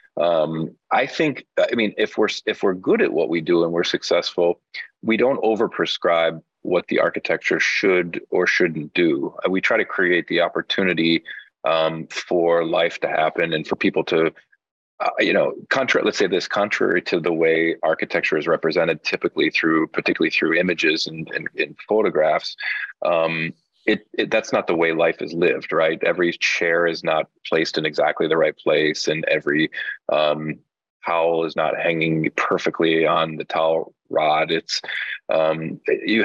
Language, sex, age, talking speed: English, male, 30-49, 165 wpm